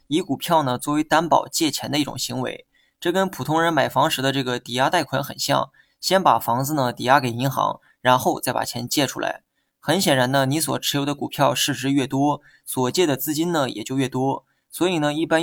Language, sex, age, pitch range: Chinese, male, 20-39, 135-160 Hz